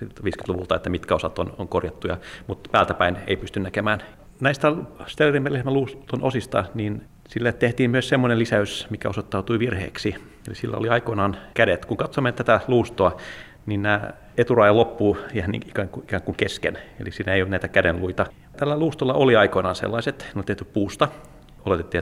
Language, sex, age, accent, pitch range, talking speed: Finnish, male, 40-59, native, 95-125 Hz, 155 wpm